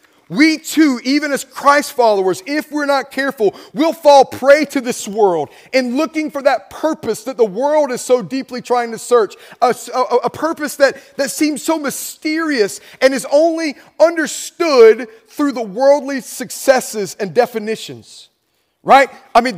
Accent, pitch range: American, 245-305 Hz